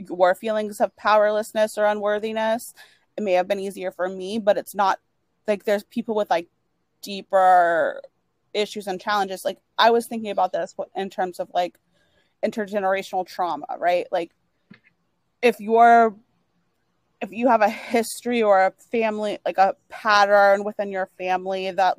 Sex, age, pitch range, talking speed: female, 30-49, 180-215 Hz, 155 wpm